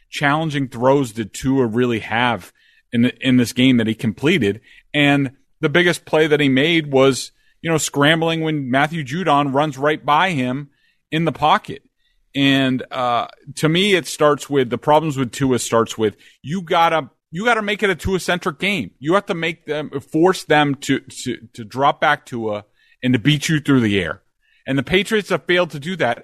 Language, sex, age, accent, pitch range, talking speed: English, male, 30-49, American, 120-150 Hz, 195 wpm